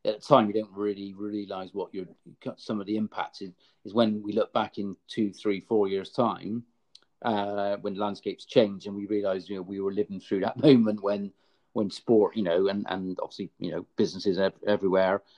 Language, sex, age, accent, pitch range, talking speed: English, male, 40-59, British, 105-120 Hz, 205 wpm